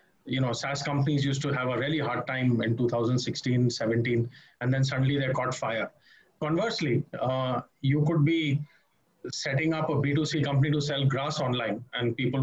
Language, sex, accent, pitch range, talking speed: English, male, Indian, 125-150 Hz, 175 wpm